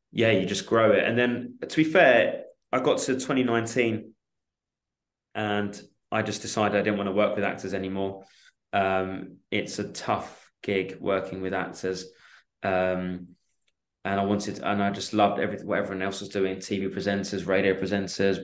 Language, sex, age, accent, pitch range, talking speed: English, male, 20-39, British, 95-110 Hz, 175 wpm